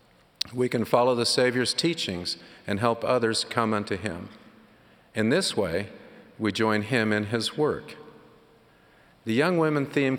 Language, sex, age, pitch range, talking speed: English, male, 50-69, 95-120 Hz, 145 wpm